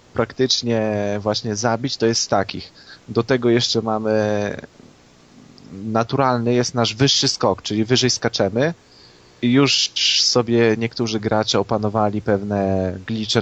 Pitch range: 100-120 Hz